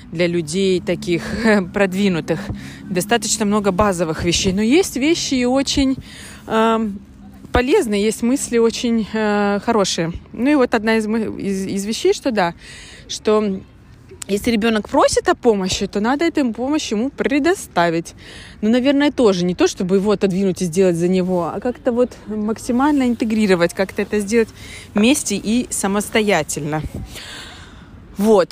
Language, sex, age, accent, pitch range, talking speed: Russian, female, 20-39, native, 180-235 Hz, 135 wpm